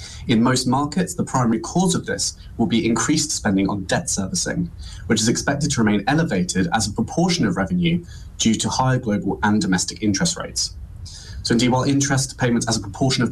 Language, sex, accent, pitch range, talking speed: English, male, British, 95-115 Hz, 195 wpm